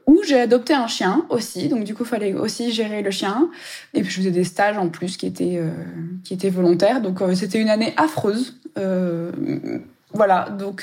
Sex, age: female, 20-39